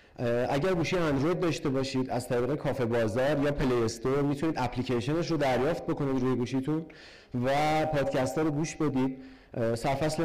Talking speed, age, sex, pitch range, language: 160 wpm, 30-49, male, 135-165 Hz, Persian